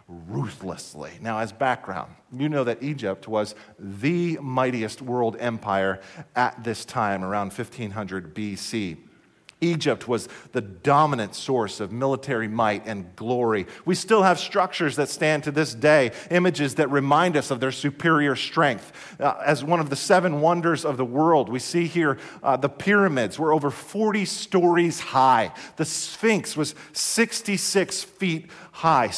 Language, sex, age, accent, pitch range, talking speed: English, male, 40-59, American, 115-170 Hz, 150 wpm